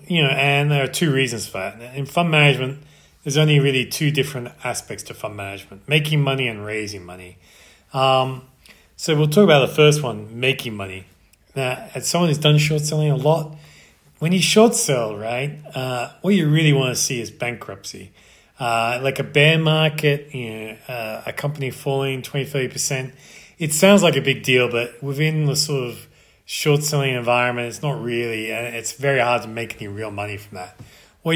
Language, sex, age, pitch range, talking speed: English, male, 30-49, 110-145 Hz, 195 wpm